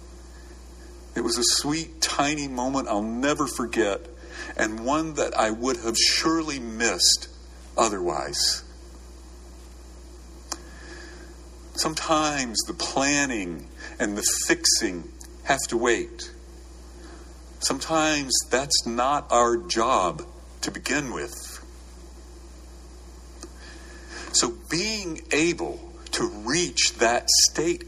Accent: American